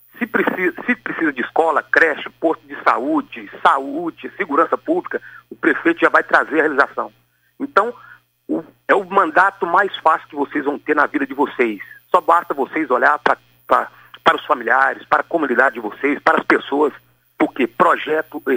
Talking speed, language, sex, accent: 180 wpm, Portuguese, male, Brazilian